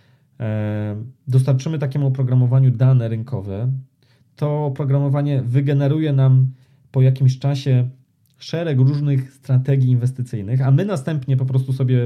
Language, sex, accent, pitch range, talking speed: Polish, male, native, 125-135 Hz, 110 wpm